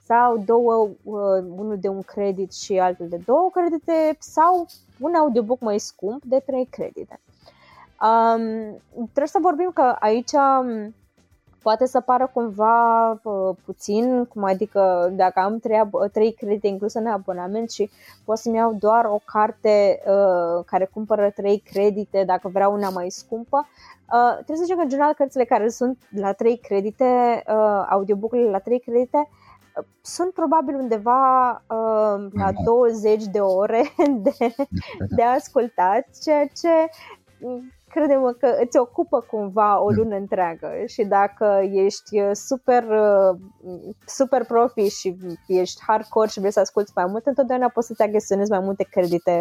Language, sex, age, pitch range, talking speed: Romanian, female, 20-39, 200-250 Hz, 145 wpm